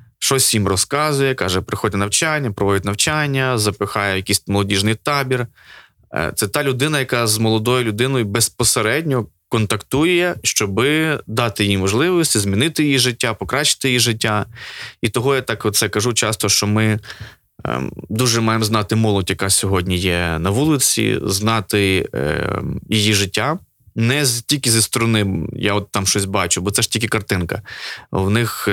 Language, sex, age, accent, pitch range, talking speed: Ukrainian, male, 20-39, native, 100-120 Hz, 145 wpm